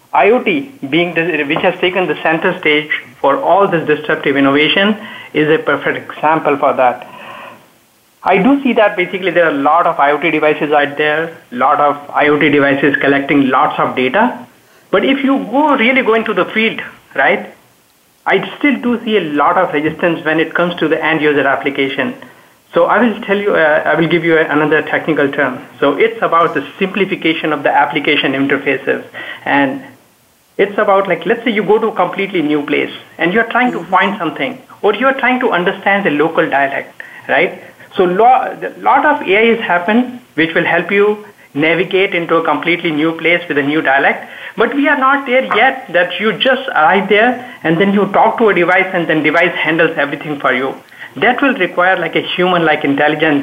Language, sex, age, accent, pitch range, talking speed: English, male, 50-69, Indian, 155-210 Hz, 190 wpm